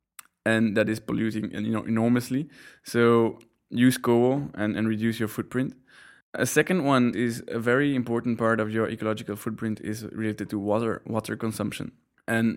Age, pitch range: 20-39, 110-120 Hz